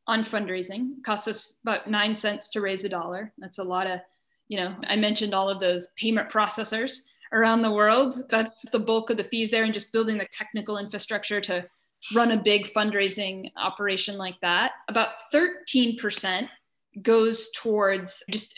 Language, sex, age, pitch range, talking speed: English, female, 10-29, 195-250 Hz, 170 wpm